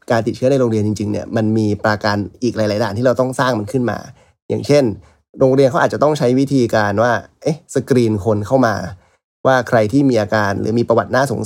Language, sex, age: Thai, male, 20-39